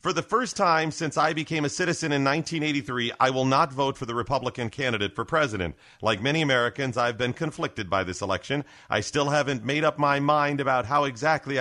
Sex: male